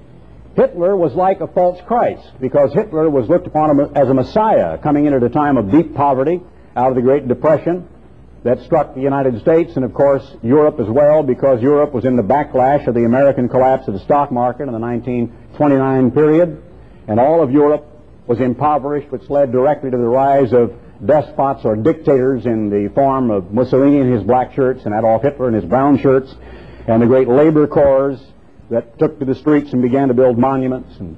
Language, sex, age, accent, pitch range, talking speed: English, male, 60-79, American, 130-155 Hz, 200 wpm